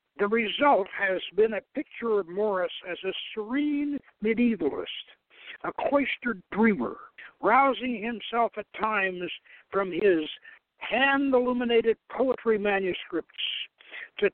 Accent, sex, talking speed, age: American, male, 105 wpm, 60-79